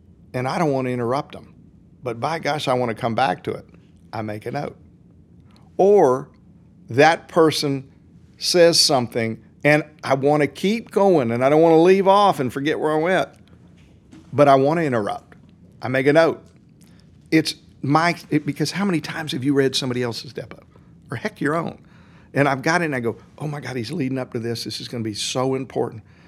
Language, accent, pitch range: English, American, 125-160 Hz